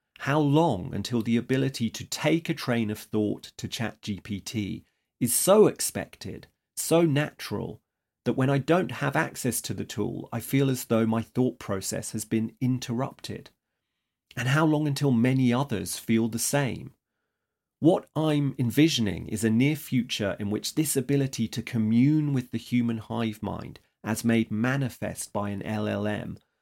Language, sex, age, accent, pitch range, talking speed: English, male, 40-59, British, 105-135 Hz, 160 wpm